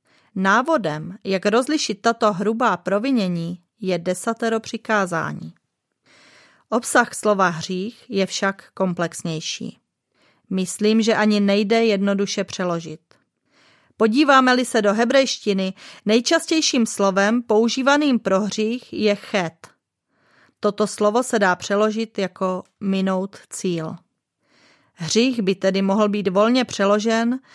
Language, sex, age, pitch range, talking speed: Czech, female, 30-49, 190-230 Hz, 100 wpm